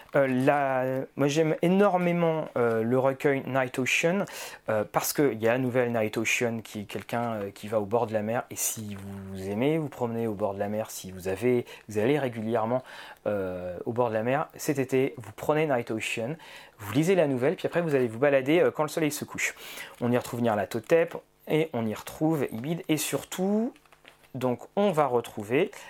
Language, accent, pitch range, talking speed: French, French, 115-155 Hz, 200 wpm